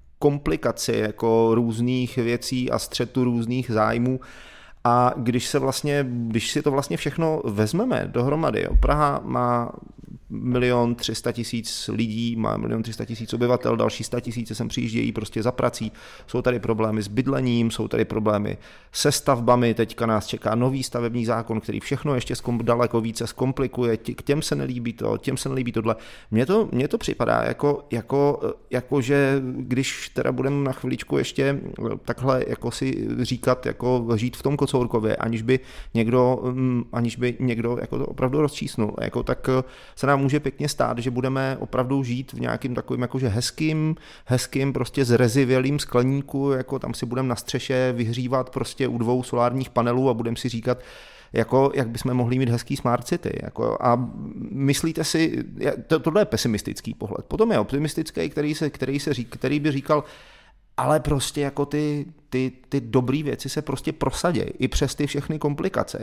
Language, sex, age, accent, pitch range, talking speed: Czech, male, 30-49, native, 120-140 Hz, 160 wpm